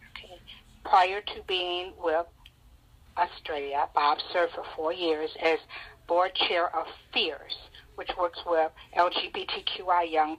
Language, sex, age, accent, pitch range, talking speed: English, female, 60-79, American, 170-260 Hz, 115 wpm